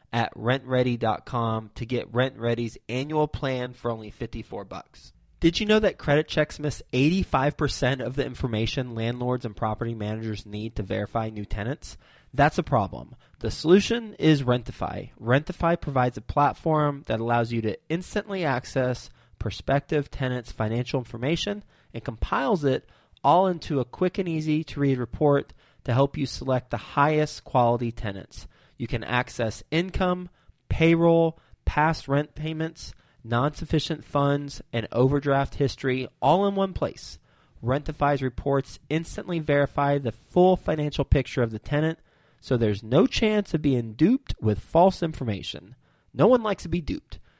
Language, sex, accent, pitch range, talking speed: English, male, American, 115-155 Hz, 145 wpm